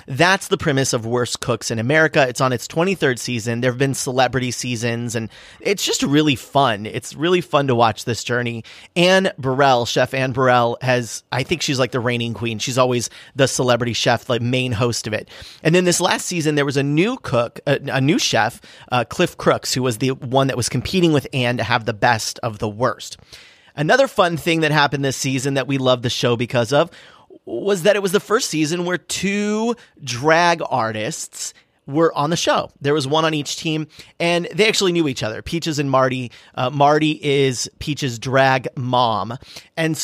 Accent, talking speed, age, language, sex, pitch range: American, 205 wpm, 30-49, English, male, 125-155 Hz